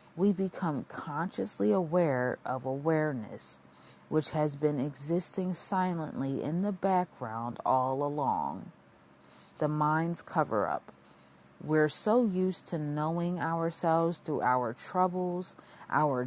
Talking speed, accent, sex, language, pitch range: 105 wpm, American, female, English, 125-165 Hz